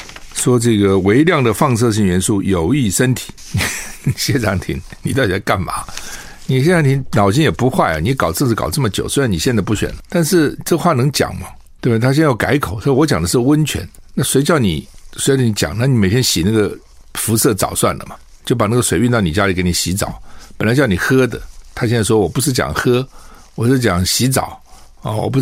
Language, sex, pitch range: Chinese, male, 95-130 Hz